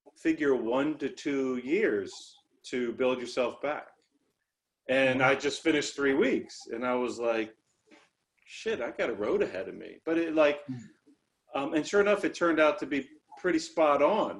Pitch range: 120-155 Hz